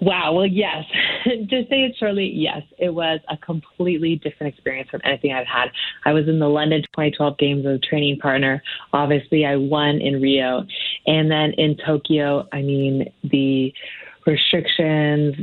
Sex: female